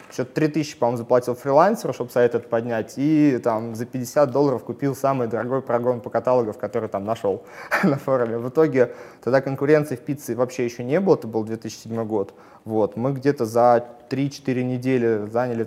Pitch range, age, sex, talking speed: 115-140 Hz, 20-39, male, 180 wpm